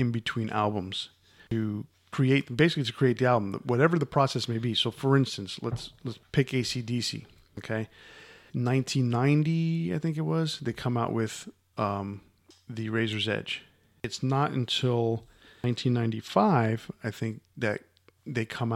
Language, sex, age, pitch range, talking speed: English, male, 40-59, 110-135 Hz, 145 wpm